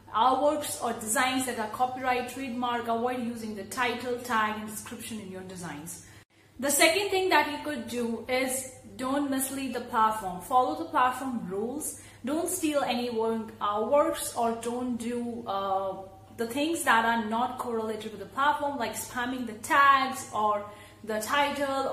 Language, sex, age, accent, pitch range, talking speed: English, female, 30-49, Indian, 220-260 Hz, 165 wpm